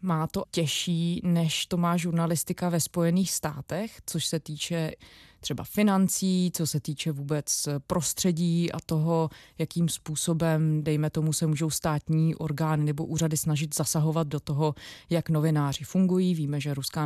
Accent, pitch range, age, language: native, 150-170 Hz, 20-39, Czech